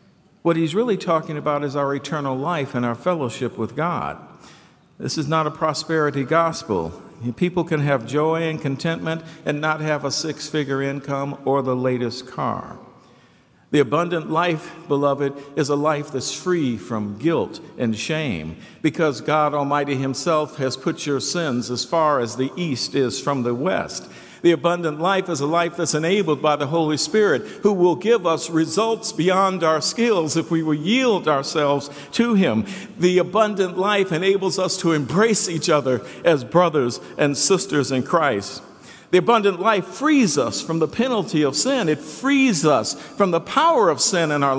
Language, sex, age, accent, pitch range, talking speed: English, male, 50-69, American, 140-180 Hz, 170 wpm